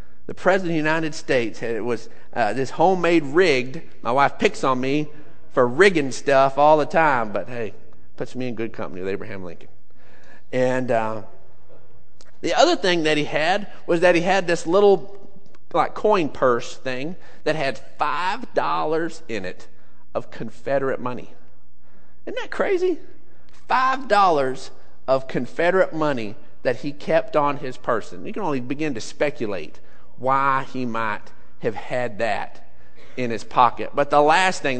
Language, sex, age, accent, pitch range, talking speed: English, male, 40-59, American, 120-165 Hz, 160 wpm